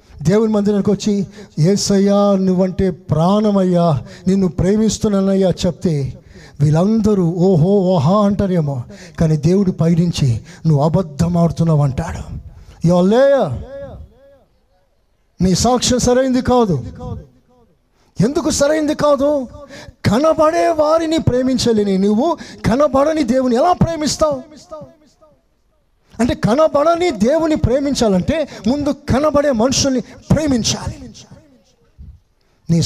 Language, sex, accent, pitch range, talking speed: Telugu, male, native, 155-235 Hz, 80 wpm